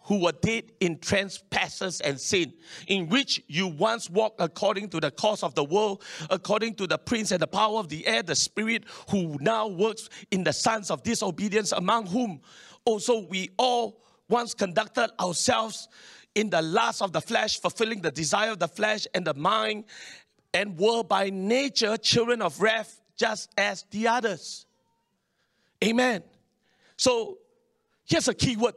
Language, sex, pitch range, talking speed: English, male, 185-235 Hz, 165 wpm